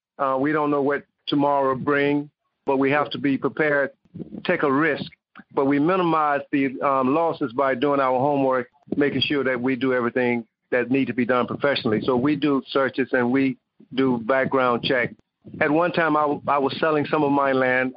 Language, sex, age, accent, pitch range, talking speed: English, male, 50-69, American, 130-145 Hz, 195 wpm